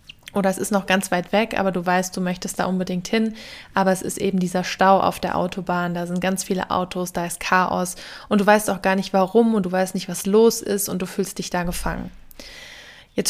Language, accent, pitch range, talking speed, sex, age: German, German, 185-210 Hz, 240 wpm, female, 20-39